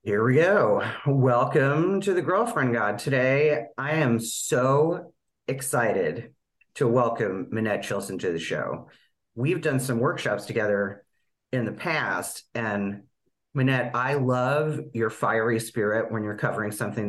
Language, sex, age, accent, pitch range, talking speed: English, male, 40-59, American, 105-135 Hz, 135 wpm